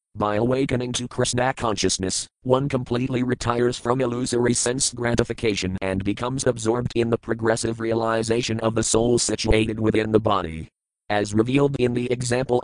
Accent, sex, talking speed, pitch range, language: American, male, 145 wpm, 110-120 Hz, English